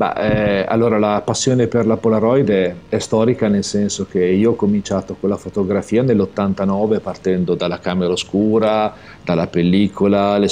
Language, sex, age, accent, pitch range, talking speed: Italian, male, 40-59, native, 95-115 Hz, 155 wpm